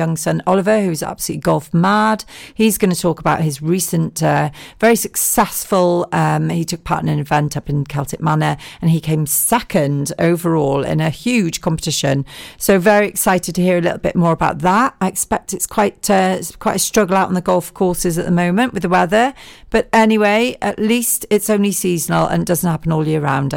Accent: British